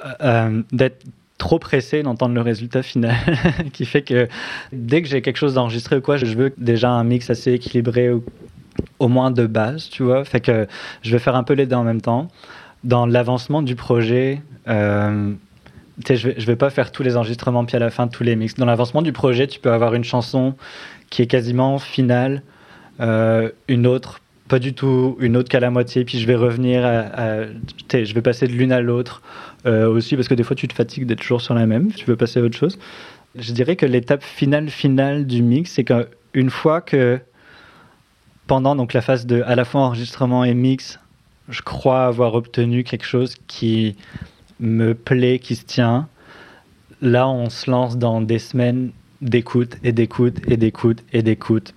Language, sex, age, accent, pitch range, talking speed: French, male, 20-39, French, 120-130 Hz, 200 wpm